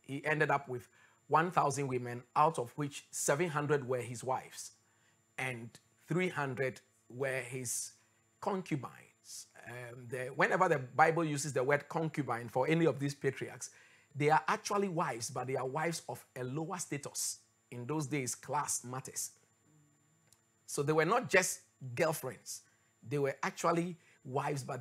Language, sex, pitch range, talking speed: English, male, 115-155 Hz, 145 wpm